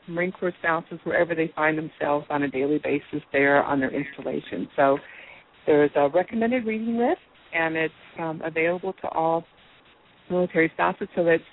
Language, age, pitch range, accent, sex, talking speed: English, 60-79, 165-200 Hz, American, female, 165 wpm